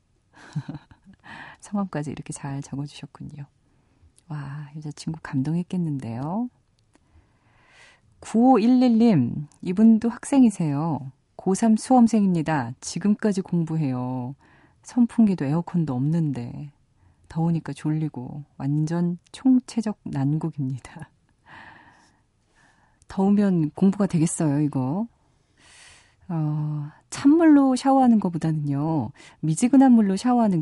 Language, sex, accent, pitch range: Korean, female, native, 140-195 Hz